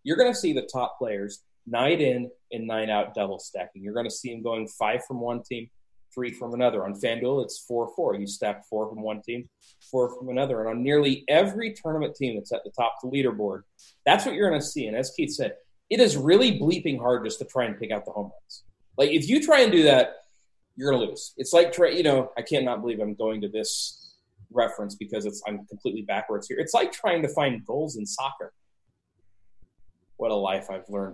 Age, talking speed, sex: 30-49, 235 wpm, male